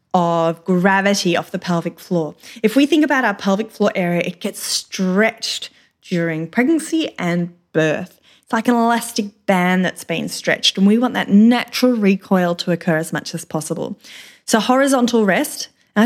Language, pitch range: English, 180-245 Hz